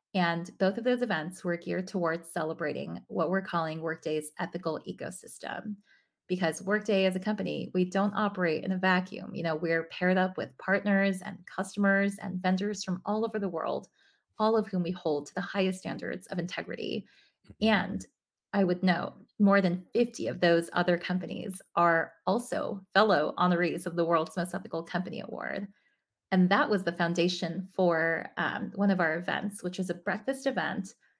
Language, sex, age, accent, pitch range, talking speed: English, female, 20-39, American, 170-200 Hz, 175 wpm